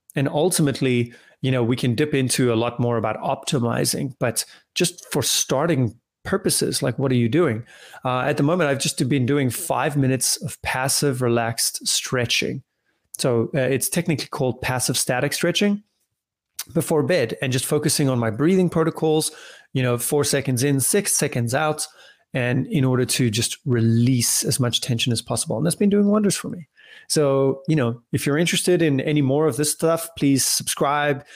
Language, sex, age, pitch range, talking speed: English, male, 30-49, 125-155 Hz, 180 wpm